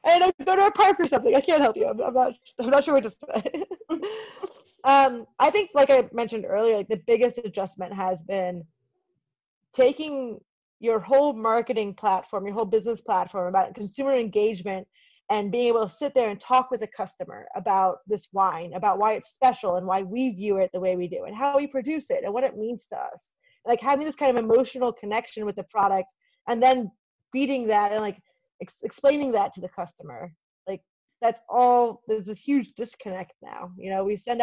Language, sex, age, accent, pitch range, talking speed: English, female, 30-49, American, 195-260 Hz, 200 wpm